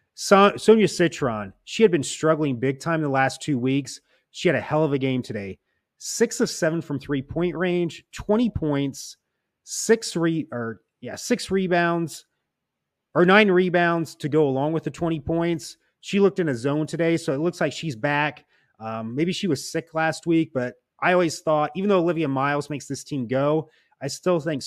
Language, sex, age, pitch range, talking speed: English, male, 30-49, 130-170 Hz, 195 wpm